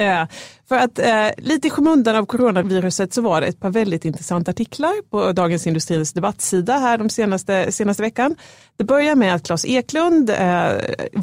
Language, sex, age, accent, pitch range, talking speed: Swedish, female, 30-49, native, 175-245 Hz, 175 wpm